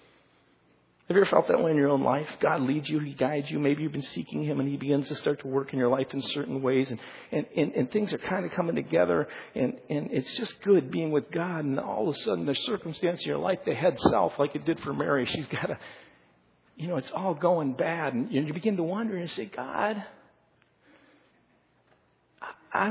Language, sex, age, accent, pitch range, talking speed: English, male, 50-69, American, 140-200 Hz, 235 wpm